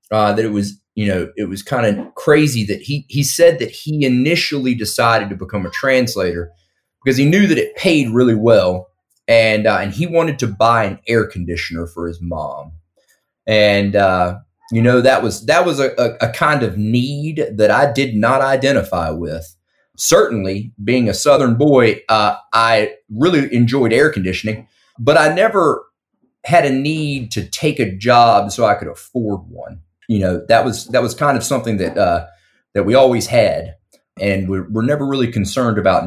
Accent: American